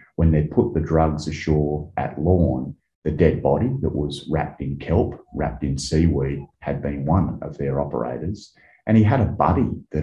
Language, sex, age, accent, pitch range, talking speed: English, male, 30-49, Australian, 75-85 Hz, 185 wpm